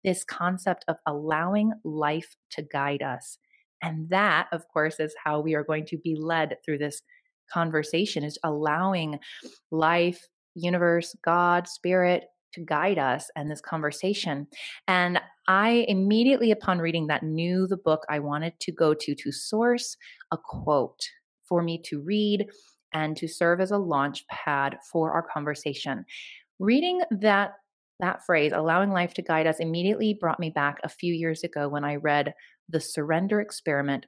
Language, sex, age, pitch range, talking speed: English, female, 30-49, 150-185 Hz, 160 wpm